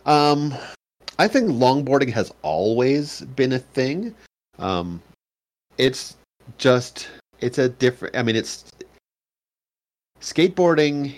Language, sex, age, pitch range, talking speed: English, male, 40-59, 90-125 Hz, 100 wpm